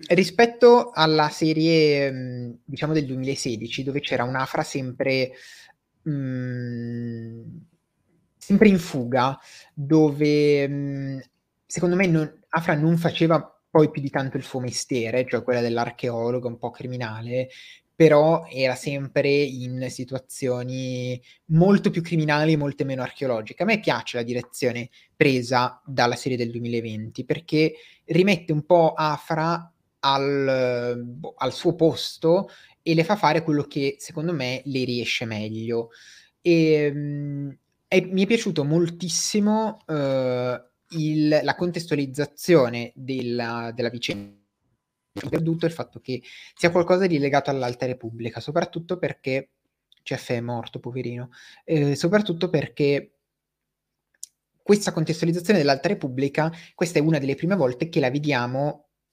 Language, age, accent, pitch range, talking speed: Italian, 30-49, native, 125-165 Hz, 125 wpm